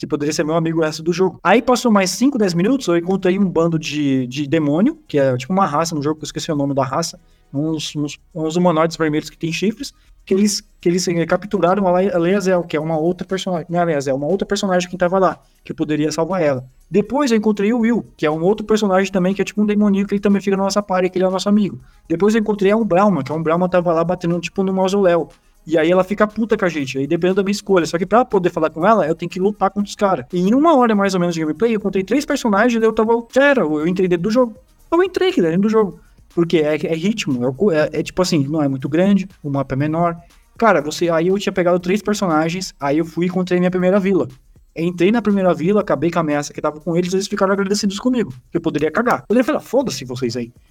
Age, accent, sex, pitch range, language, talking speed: 20-39, Brazilian, male, 160-205 Hz, Portuguese, 265 wpm